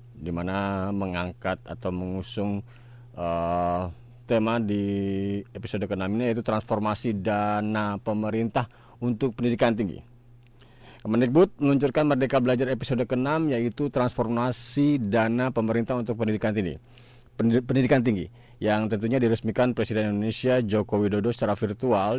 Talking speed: 115 wpm